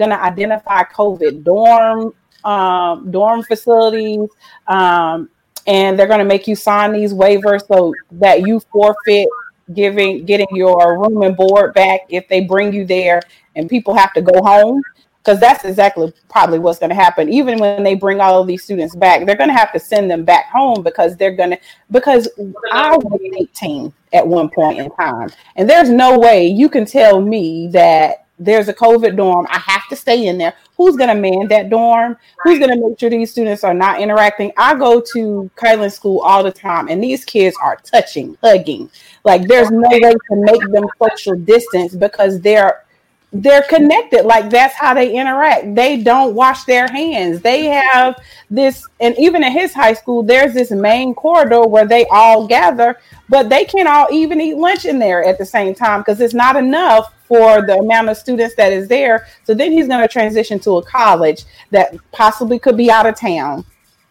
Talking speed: 195 wpm